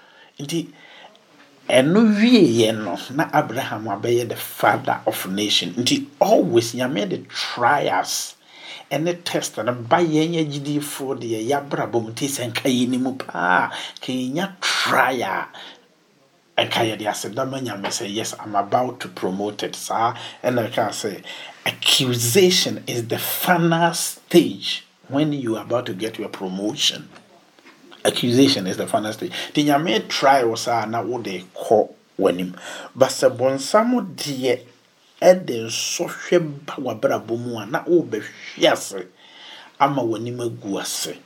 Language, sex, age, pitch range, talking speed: English, male, 50-69, 115-165 Hz, 115 wpm